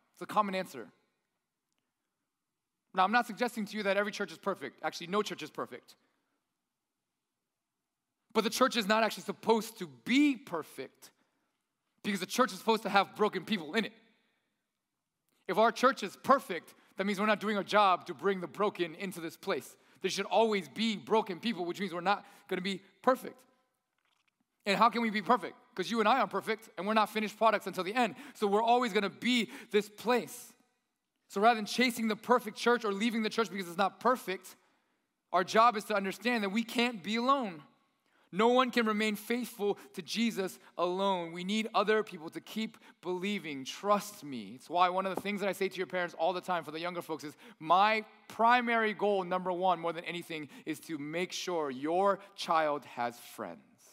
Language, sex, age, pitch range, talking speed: English, male, 30-49, 185-230 Hz, 200 wpm